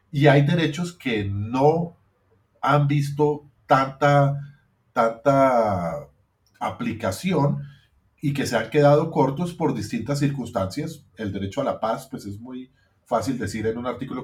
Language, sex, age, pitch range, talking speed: Spanish, male, 40-59, 105-140 Hz, 135 wpm